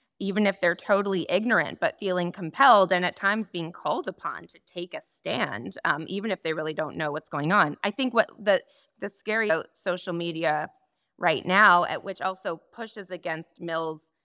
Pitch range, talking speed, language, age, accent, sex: 170-210 Hz, 190 wpm, English, 20-39, American, female